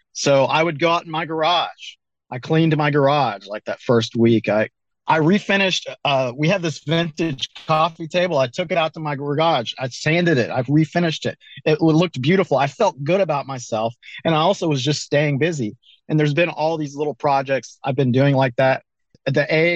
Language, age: English, 40-59